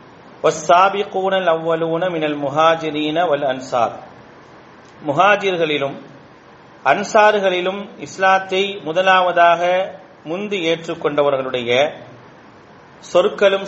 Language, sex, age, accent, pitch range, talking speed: English, male, 40-59, Indian, 145-185 Hz, 65 wpm